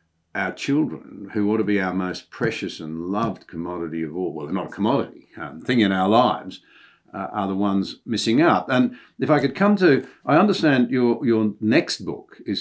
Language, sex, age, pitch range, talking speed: English, male, 60-79, 90-115 Hz, 205 wpm